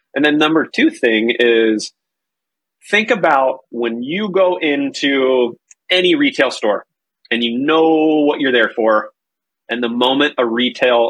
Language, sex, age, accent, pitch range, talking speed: English, male, 30-49, American, 120-185 Hz, 145 wpm